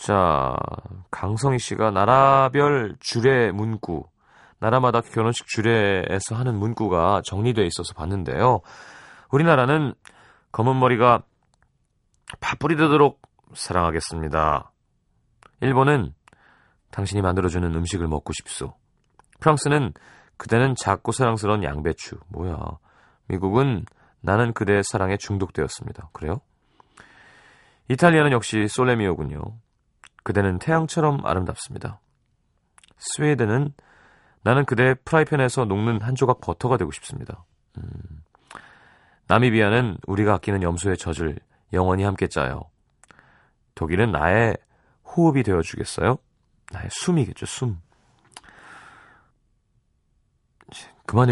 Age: 30-49